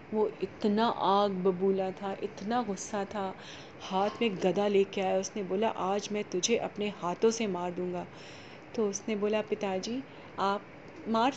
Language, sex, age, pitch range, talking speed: Hindi, female, 30-49, 200-260 Hz, 155 wpm